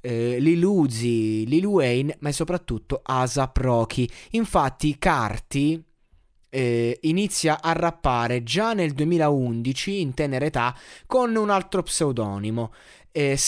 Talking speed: 125 wpm